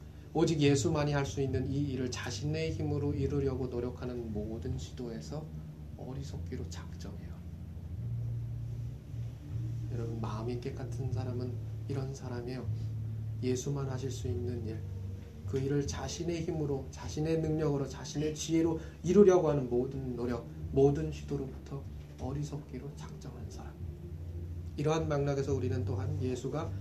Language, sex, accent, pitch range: Korean, male, native, 85-135 Hz